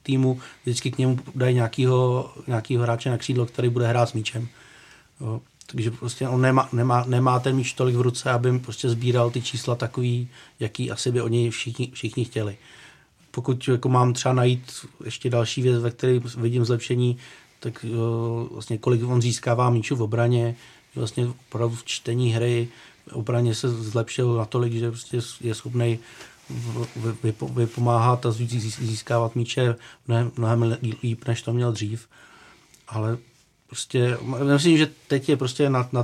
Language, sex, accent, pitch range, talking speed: Czech, male, native, 115-125 Hz, 155 wpm